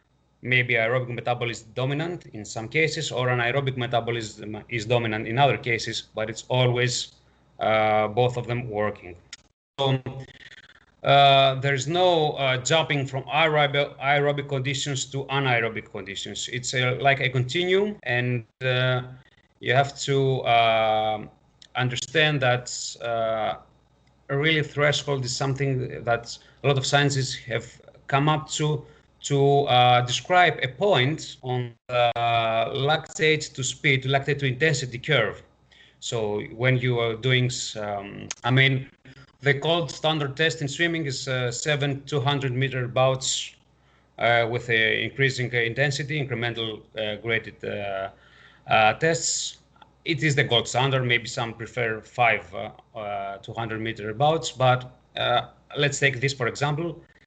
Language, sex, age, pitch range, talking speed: English, male, 30-49, 115-140 Hz, 130 wpm